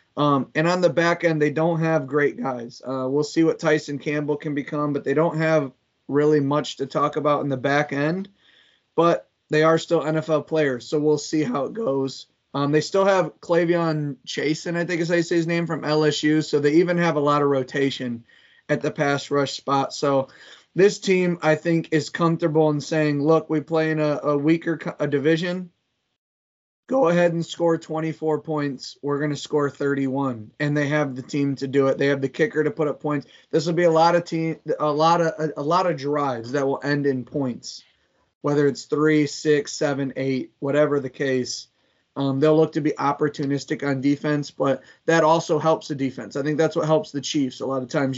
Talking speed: 215 wpm